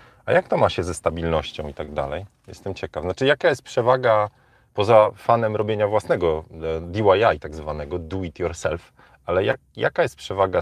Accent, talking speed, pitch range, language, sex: native, 170 wpm, 85-115 Hz, Polish, male